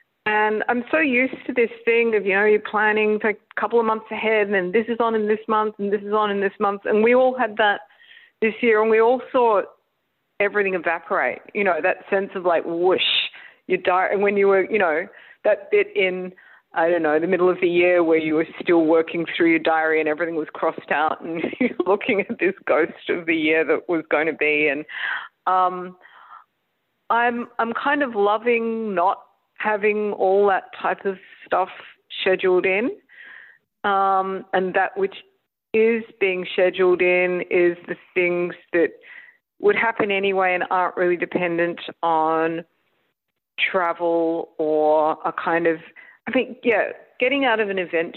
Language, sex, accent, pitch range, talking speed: English, female, Australian, 170-220 Hz, 185 wpm